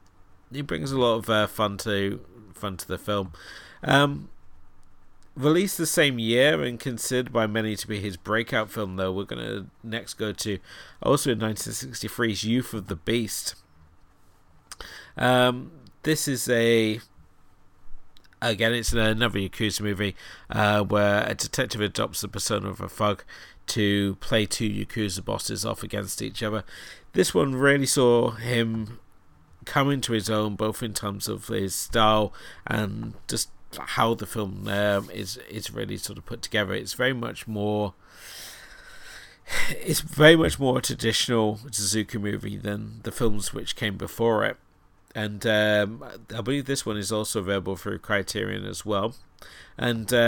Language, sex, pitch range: English, male, 100-120 Hz